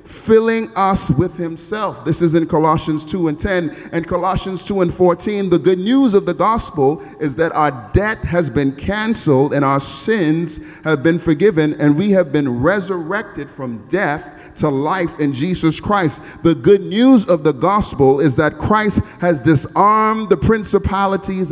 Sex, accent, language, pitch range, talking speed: male, American, English, 145-185 Hz, 165 wpm